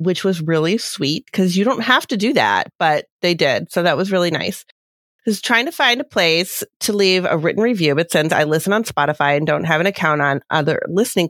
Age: 30-49